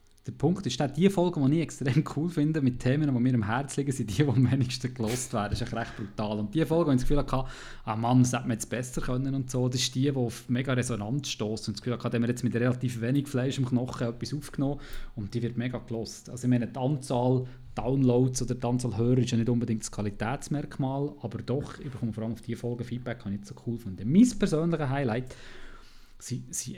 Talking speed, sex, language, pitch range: 250 wpm, male, German, 115-135 Hz